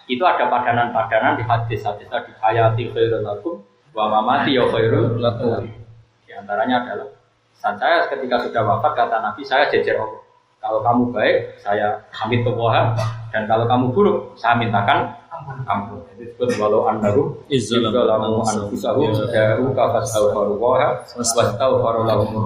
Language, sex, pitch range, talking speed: Indonesian, male, 110-145 Hz, 130 wpm